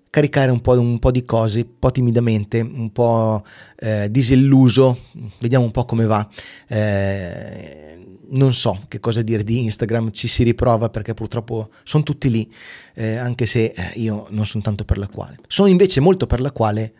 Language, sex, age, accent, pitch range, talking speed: Italian, male, 30-49, native, 110-130 Hz, 160 wpm